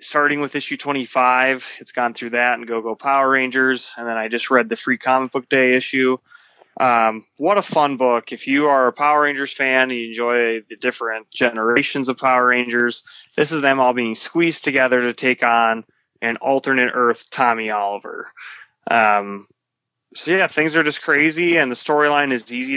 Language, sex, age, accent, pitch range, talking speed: English, male, 20-39, American, 115-135 Hz, 185 wpm